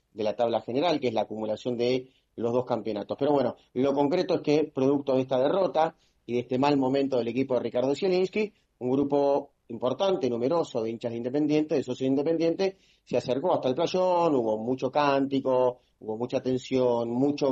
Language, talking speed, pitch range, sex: Italian, 190 wpm, 120-140 Hz, male